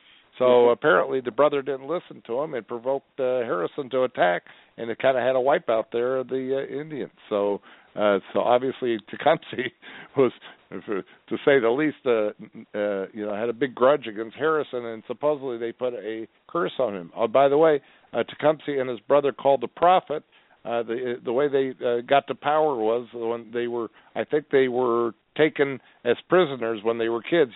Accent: American